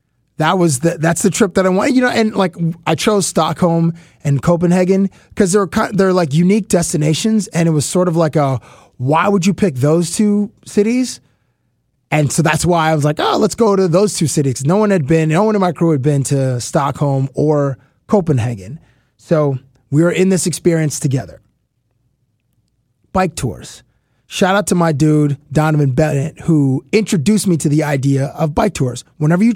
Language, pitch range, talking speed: English, 145-190 Hz, 185 wpm